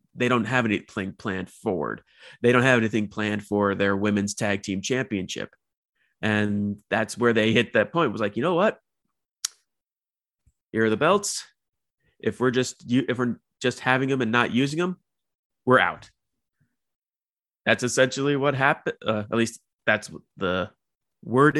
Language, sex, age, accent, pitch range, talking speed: English, male, 30-49, American, 105-140 Hz, 165 wpm